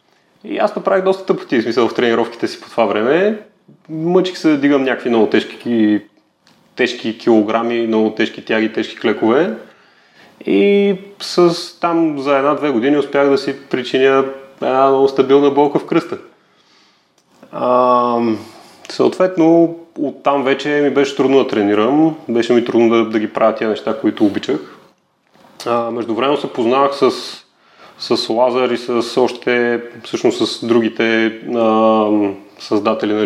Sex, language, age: male, Bulgarian, 30-49